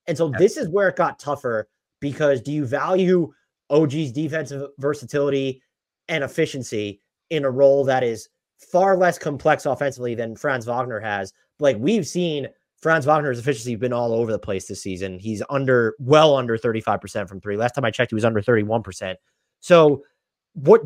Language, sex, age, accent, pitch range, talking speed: English, male, 30-49, American, 130-175 Hz, 175 wpm